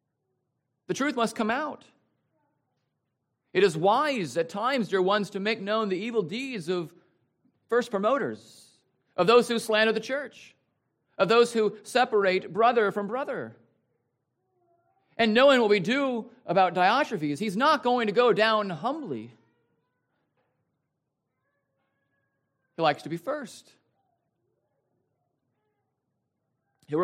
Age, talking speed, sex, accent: 50-69, 120 wpm, male, American